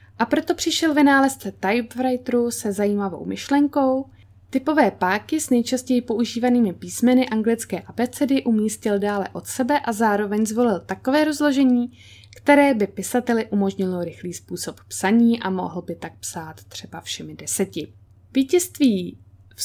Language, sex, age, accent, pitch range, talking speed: Czech, female, 20-39, native, 180-245 Hz, 130 wpm